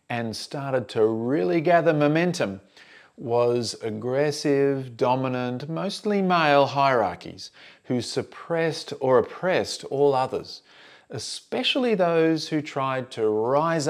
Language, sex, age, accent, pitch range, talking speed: English, male, 40-59, Australian, 110-150 Hz, 105 wpm